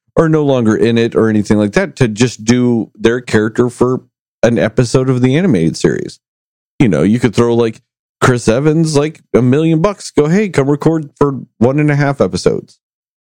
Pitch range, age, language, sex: 115-170 Hz, 40-59, English, male